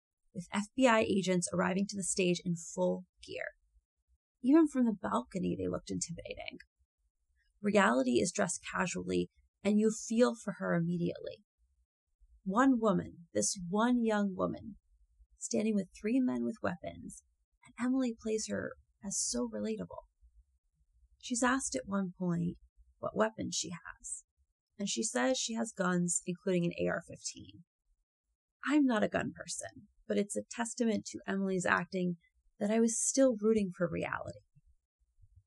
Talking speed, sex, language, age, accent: 140 wpm, female, English, 30-49, American